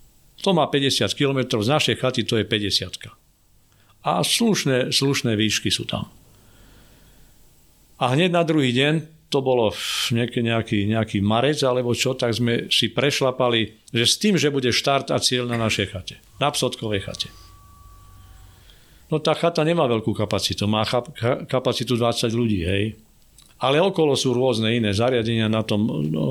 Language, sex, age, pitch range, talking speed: Slovak, male, 50-69, 110-135 Hz, 155 wpm